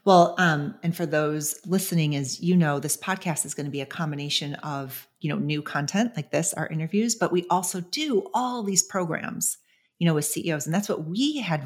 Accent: American